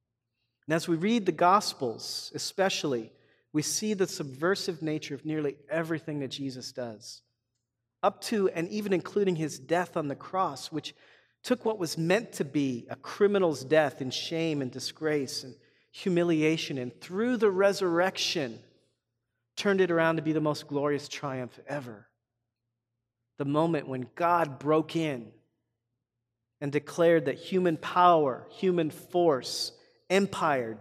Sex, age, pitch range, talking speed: male, 40-59, 125-175 Hz, 140 wpm